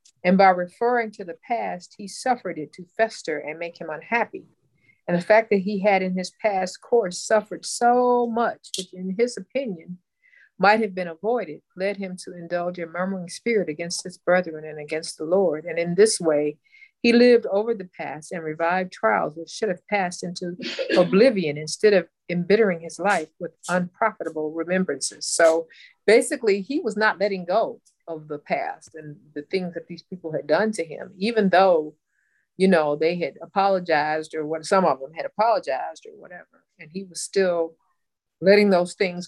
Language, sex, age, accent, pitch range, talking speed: English, female, 50-69, American, 165-210 Hz, 180 wpm